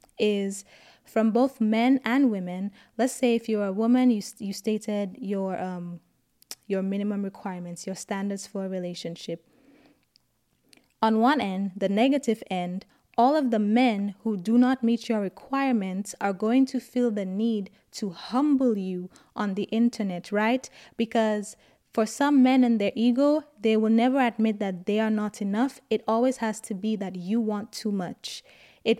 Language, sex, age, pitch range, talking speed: English, female, 20-39, 200-245 Hz, 170 wpm